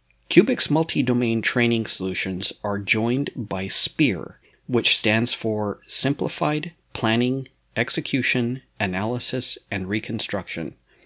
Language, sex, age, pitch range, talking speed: English, male, 40-59, 100-125 Hz, 90 wpm